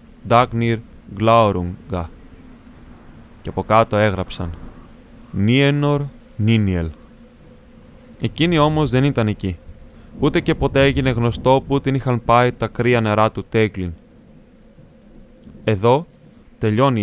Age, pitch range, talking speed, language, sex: 20-39, 105-125 Hz, 100 wpm, Greek, male